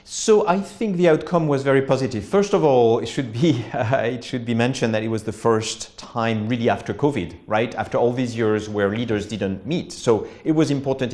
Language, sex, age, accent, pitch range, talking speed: English, male, 40-59, French, 105-130 Hz, 220 wpm